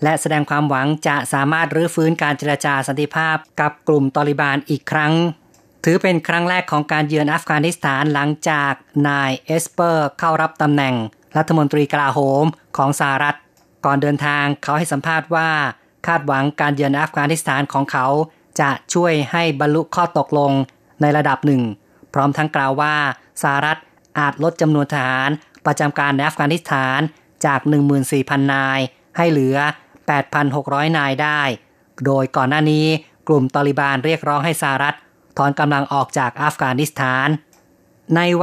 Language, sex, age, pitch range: Thai, female, 20-39, 140-160 Hz